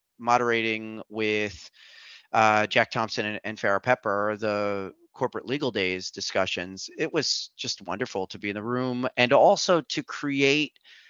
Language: English